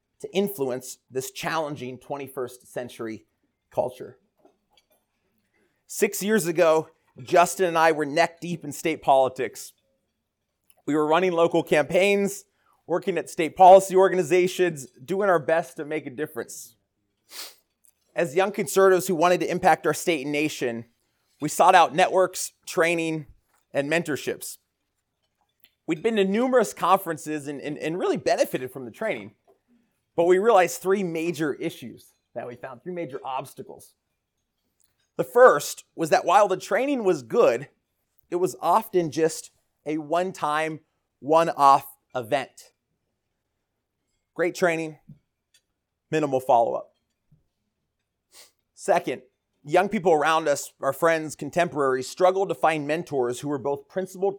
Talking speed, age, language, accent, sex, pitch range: 130 wpm, 30-49, English, American, male, 140-185 Hz